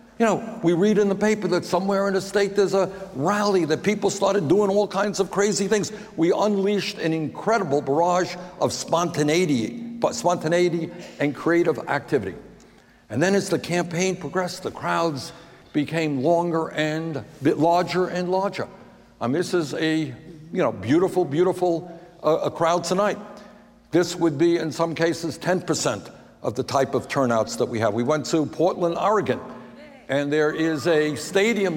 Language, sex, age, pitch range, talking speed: English, male, 60-79, 155-190 Hz, 170 wpm